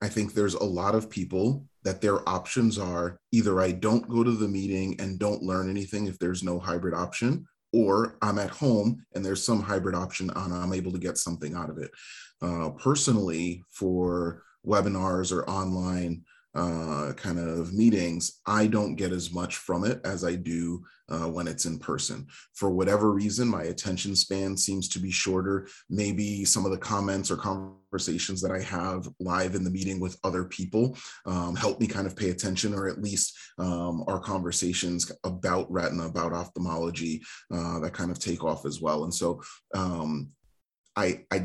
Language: English